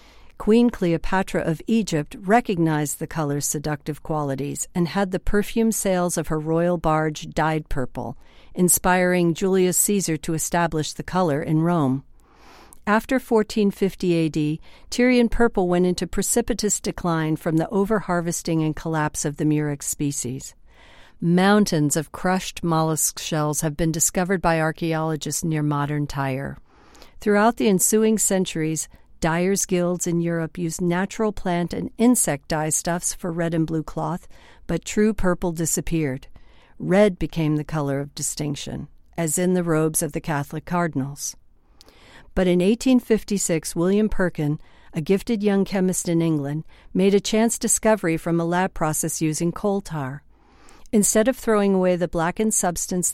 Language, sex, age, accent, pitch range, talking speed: English, female, 50-69, American, 155-195 Hz, 145 wpm